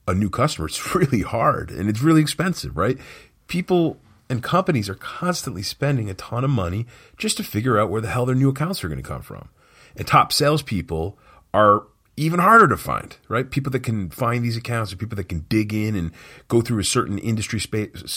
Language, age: English, 40-59